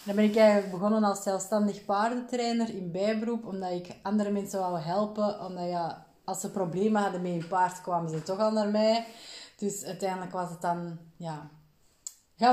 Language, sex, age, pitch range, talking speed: Dutch, female, 20-39, 175-215 Hz, 180 wpm